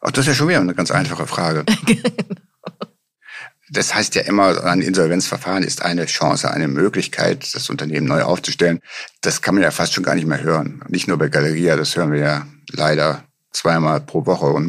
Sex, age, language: male, 60-79, German